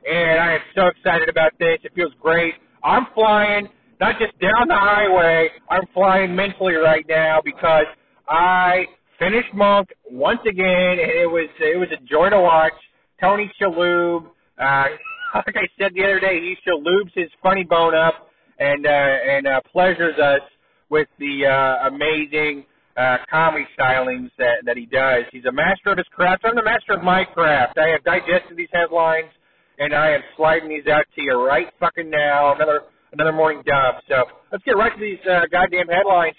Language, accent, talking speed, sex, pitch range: English, American, 180 wpm, male, 155-225 Hz